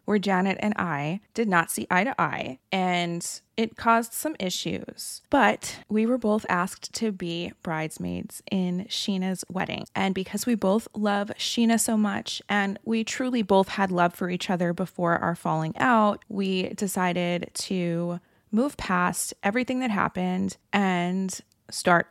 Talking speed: 155 wpm